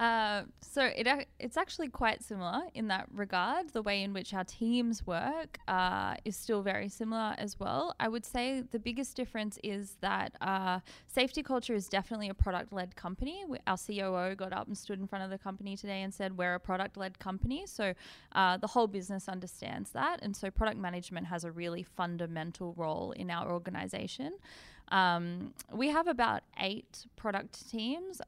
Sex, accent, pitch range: female, Australian, 185-225 Hz